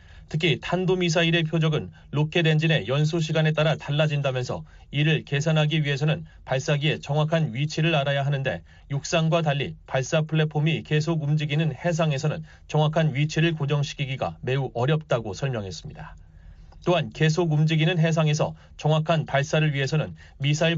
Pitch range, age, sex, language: 140-160 Hz, 30-49, male, Korean